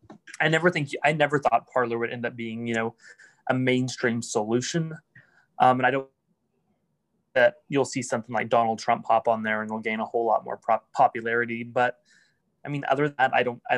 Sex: male